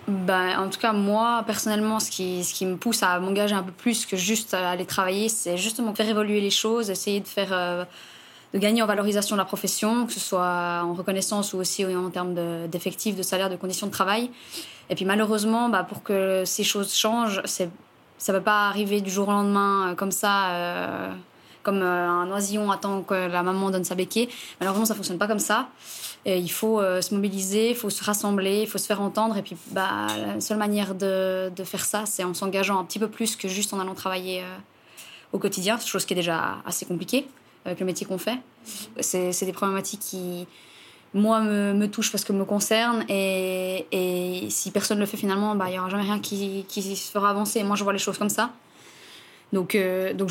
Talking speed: 225 wpm